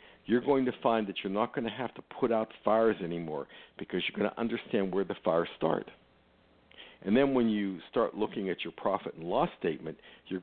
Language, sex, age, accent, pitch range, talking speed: English, male, 60-79, American, 100-140 Hz, 215 wpm